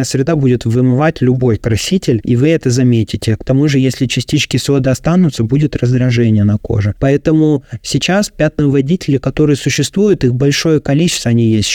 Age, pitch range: 20-39, 120-140 Hz